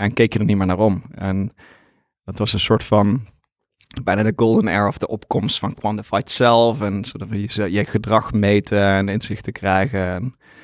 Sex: male